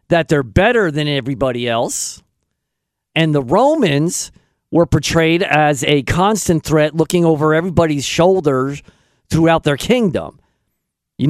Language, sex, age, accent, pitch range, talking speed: English, male, 50-69, American, 155-225 Hz, 120 wpm